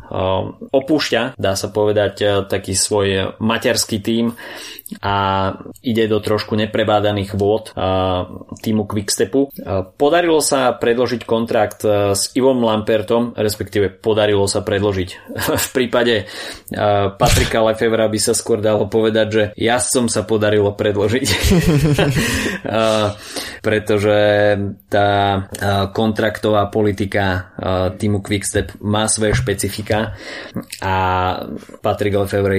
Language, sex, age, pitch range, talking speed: Slovak, male, 20-39, 95-110 Hz, 100 wpm